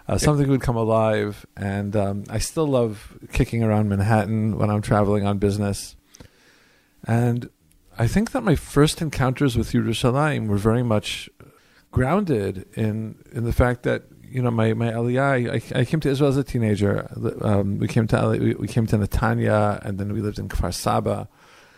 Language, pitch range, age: English, 105-140 Hz, 50-69